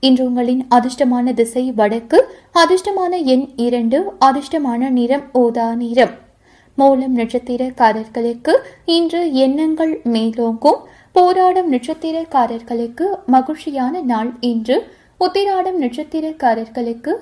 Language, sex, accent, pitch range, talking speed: Tamil, female, native, 240-315 Hz, 70 wpm